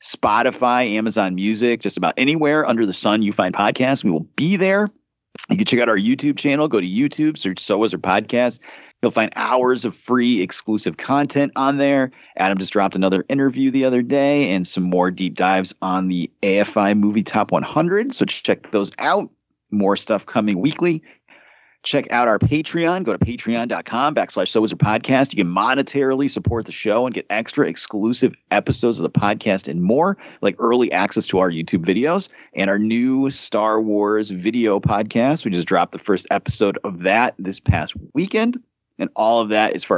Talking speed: 185 wpm